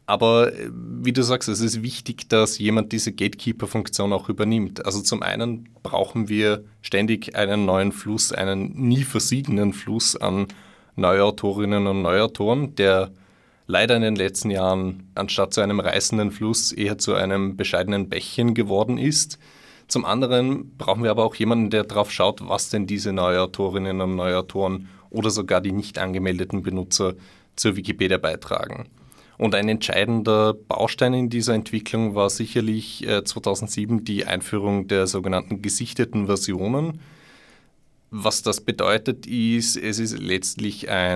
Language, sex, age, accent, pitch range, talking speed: German, male, 30-49, German, 95-115 Hz, 140 wpm